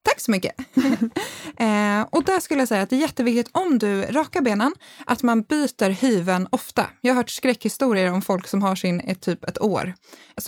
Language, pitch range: Swedish, 195-275 Hz